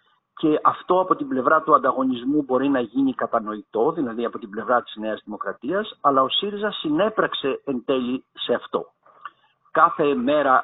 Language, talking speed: Greek, 160 wpm